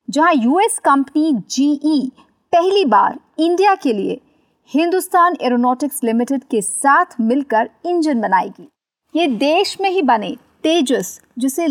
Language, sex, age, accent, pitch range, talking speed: Hindi, female, 50-69, native, 230-320 Hz, 125 wpm